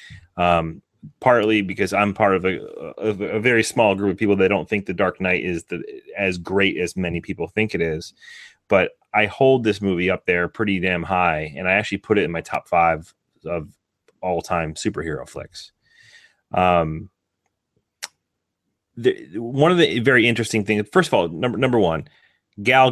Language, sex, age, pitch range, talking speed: English, male, 30-49, 90-110 Hz, 180 wpm